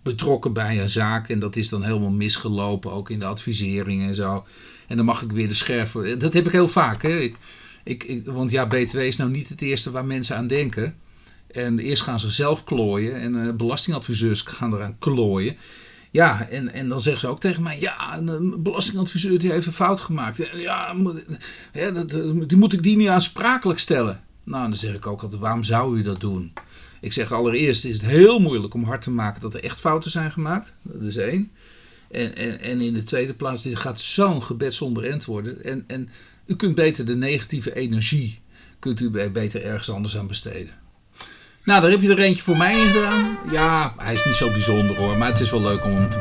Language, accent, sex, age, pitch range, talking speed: Dutch, Dutch, male, 50-69, 110-160 Hz, 220 wpm